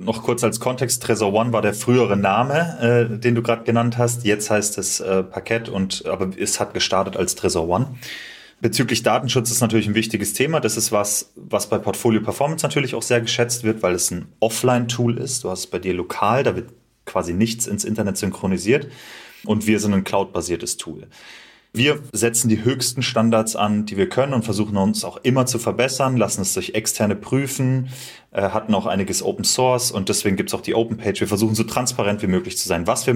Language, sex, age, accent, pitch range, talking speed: German, male, 30-49, German, 105-125 Hz, 210 wpm